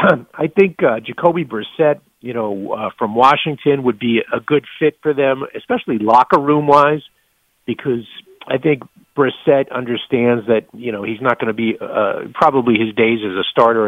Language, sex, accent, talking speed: English, male, American, 175 wpm